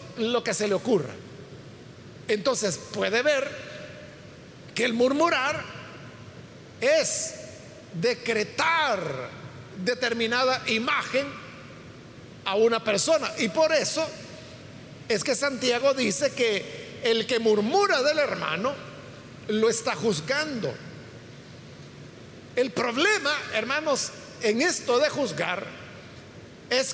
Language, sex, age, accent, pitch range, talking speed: Spanish, male, 50-69, Mexican, 210-280 Hz, 95 wpm